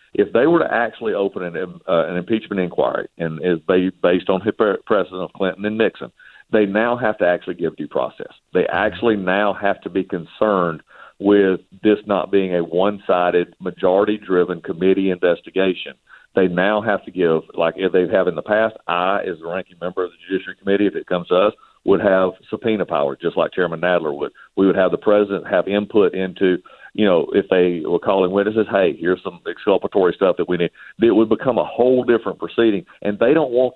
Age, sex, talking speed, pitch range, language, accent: 50-69, male, 205 wpm, 90-110 Hz, English, American